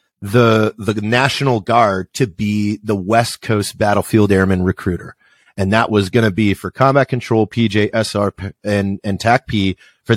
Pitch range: 100-125 Hz